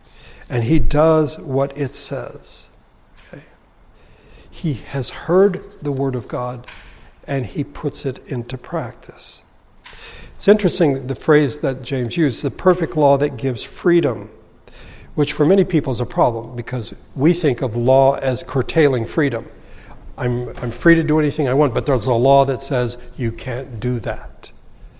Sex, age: male, 60-79